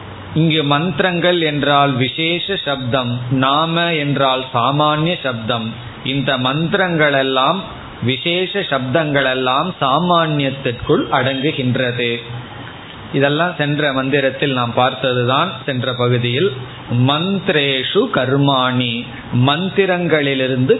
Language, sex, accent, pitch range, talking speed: Tamil, male, native, 130-160 Hz, 60 wpm